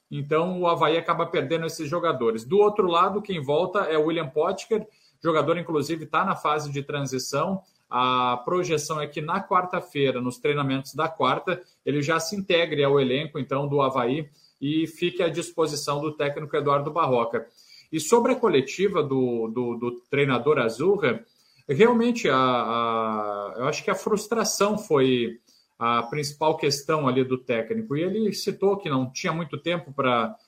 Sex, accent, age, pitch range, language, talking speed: male, Brazilian, 40-59, 135-175 Hz, Portuguese, 160 wpm